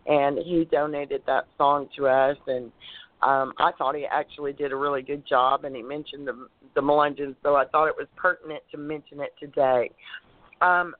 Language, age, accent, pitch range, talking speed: English, 40-59, American, 140-165 Hz, 190 wpm